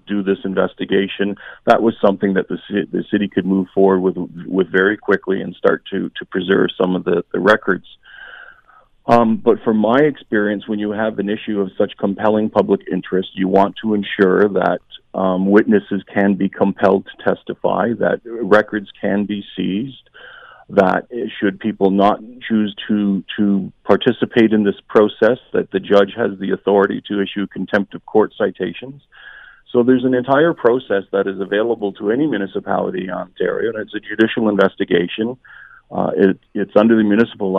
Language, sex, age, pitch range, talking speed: English, male, 50-69, 100-110 Hz, 170 wpm